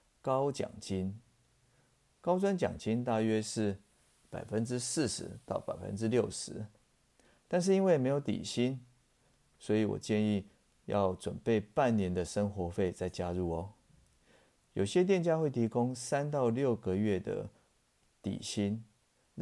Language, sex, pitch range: Chinese, male, 95-125 Hz